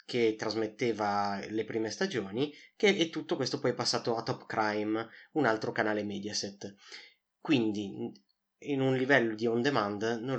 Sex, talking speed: male, 155 wpm